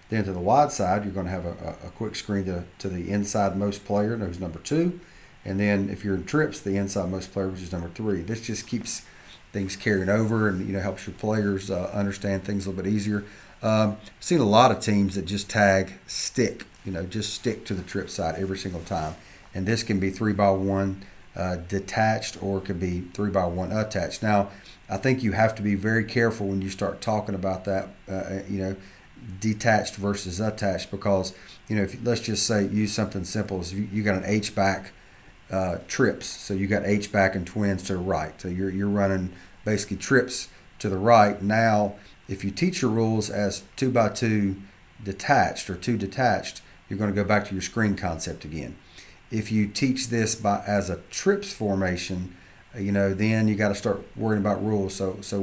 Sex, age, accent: male, 40-59, American